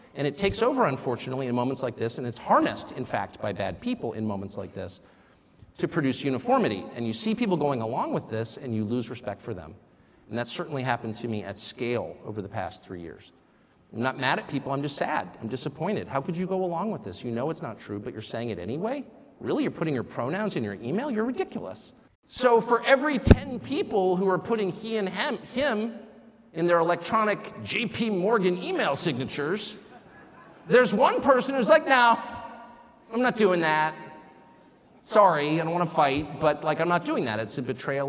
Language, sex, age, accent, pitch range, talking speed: English, male, 40-59, American, 130-215 Hz, 205 wpm